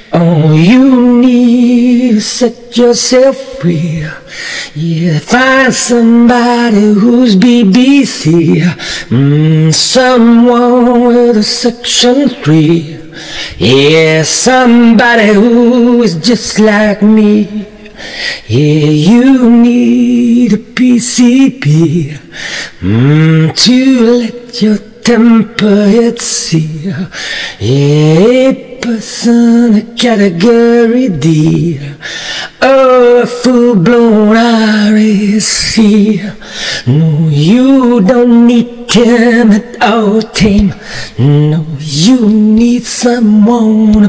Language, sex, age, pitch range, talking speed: English, male, 40-59, 185-240 Hz, 80 wpm